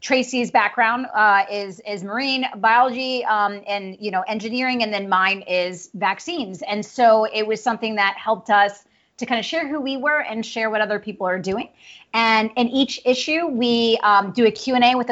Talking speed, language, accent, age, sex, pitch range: 195 wpm, English, American, 30-49, female, 205-245 Hz